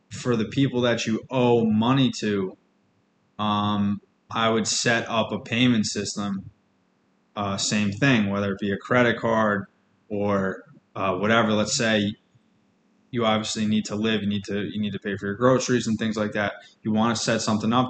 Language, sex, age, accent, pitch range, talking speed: English, male, 20-39, American, 105-115 Hz, 185 wpm